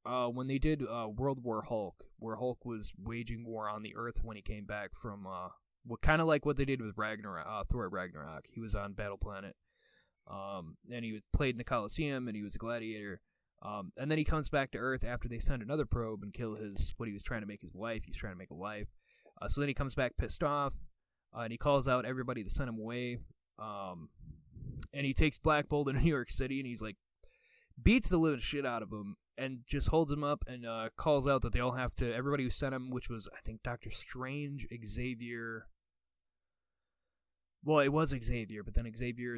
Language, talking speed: English, 230 wpm